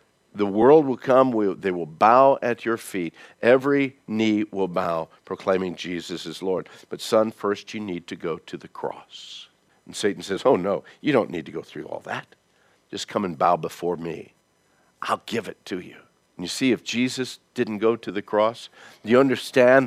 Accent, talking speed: American, 195 wpm